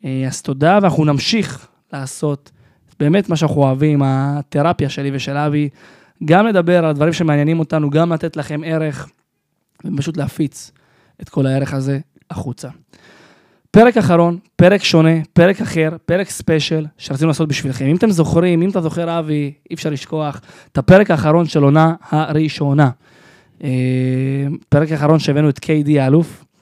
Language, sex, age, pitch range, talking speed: Hebrew, male, 20-39, 140-170 Hz, 140 wpm